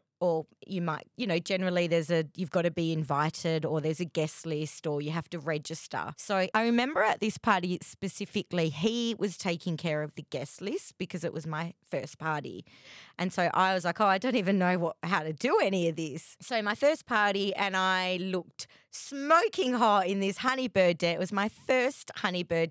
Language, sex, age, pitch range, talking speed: English, female, 20-39, 165-205 Hz, 210 wpm